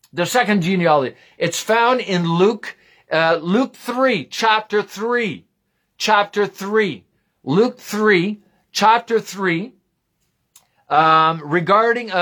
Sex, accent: male, American